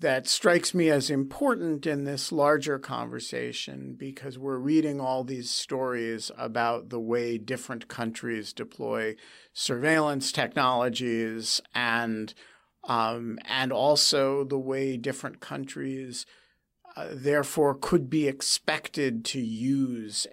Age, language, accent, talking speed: 50-69, English, American, 110 wpm